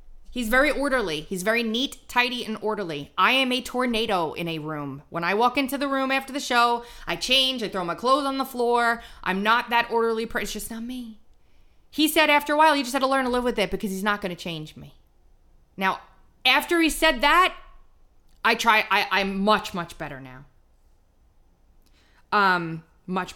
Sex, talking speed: female, 205 wpm